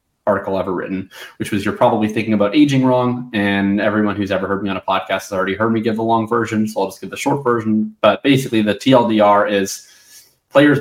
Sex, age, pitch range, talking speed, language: male, 20-39, 105-125 Hz, 230 wpm, English